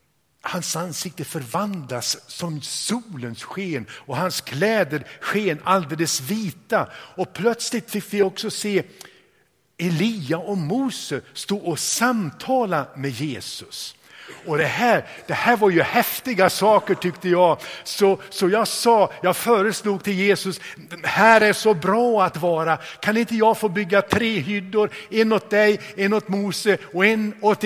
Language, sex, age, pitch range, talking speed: Swedish, male, 60-79, 145-205 Hz, 145 wpm